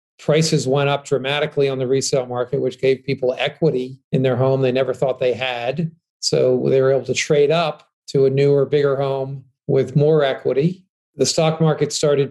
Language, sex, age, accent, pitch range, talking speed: English, male, 40-59, American, 130-160 Hz, 190 wpm